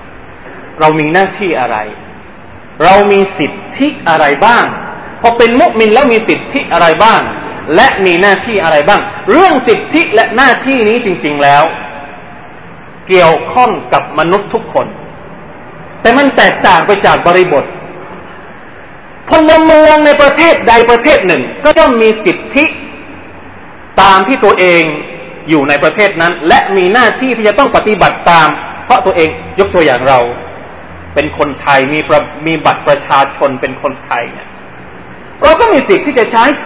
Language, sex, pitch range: Thai, male, 175-285 Hz